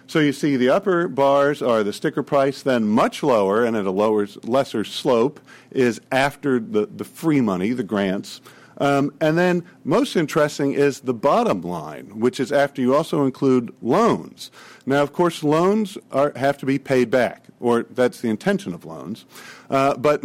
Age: 50-69